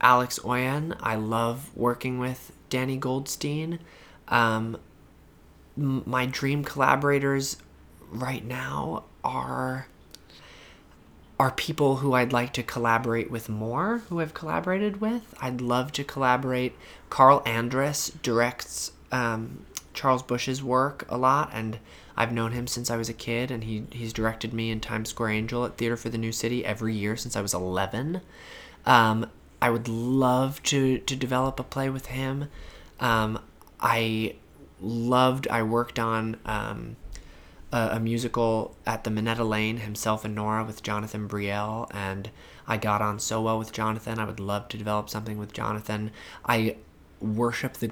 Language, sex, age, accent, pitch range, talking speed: English, male, 20-39, American, 105-125 Hz, 150 wpm